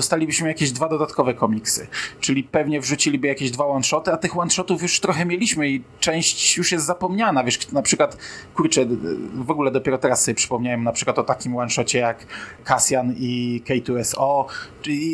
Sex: male